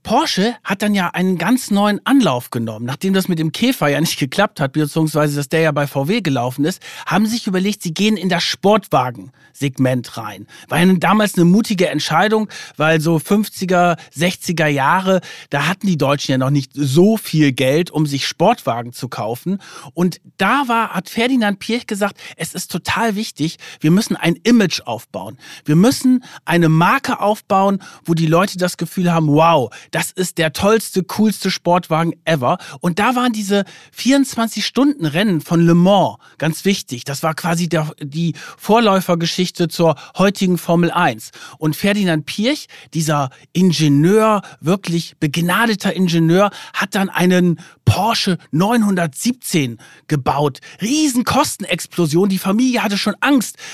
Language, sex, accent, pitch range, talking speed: German, male, German, 160-210 Hz, 150 wpm